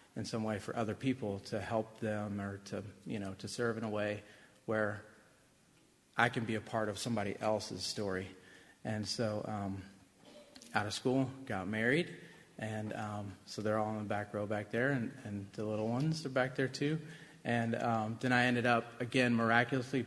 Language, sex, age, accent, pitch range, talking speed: English, male, 30-49, American, 105-125 Hz, 190 wpm